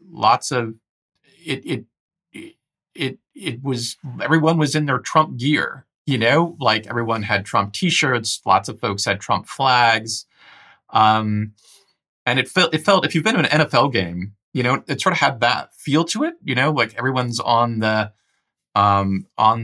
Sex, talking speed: male, 175 wpm